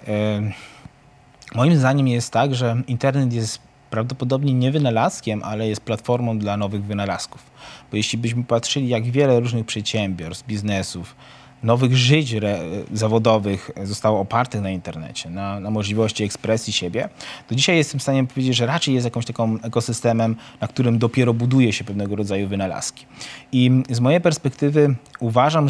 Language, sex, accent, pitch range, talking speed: Polish, male, native, 105-130 Hz, 145 wpm